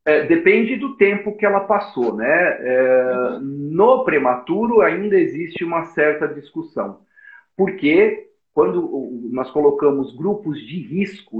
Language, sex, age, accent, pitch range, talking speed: Portuguese, male, 50-69, Brazilian, 150-225 Hz, 120 wpm